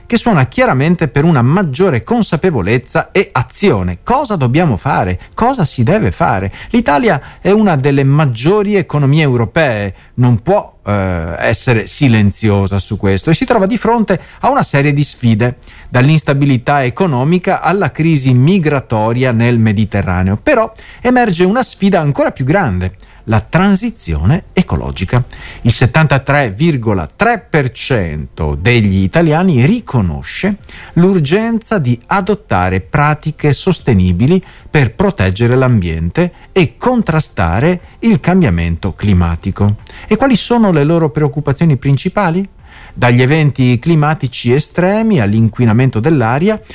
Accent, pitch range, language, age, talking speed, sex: native, 110-170 Hz, Italian, 40-59, 115 wpm, male